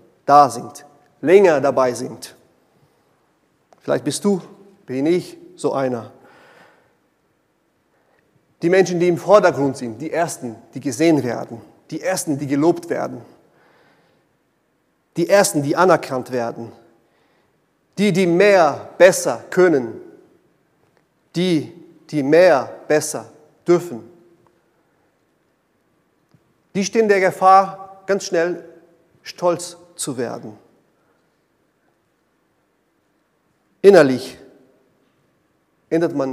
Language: German